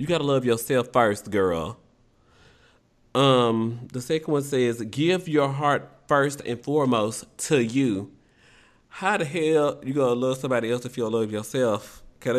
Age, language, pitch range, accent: 30-49, English, 115-140 Hz, American